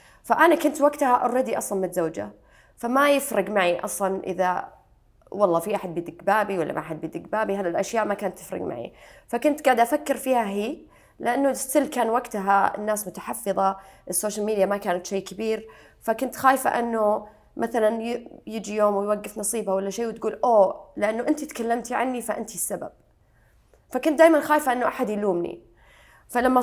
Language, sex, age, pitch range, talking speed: English, female, 20-39, 190-240 Hz, 150 wpm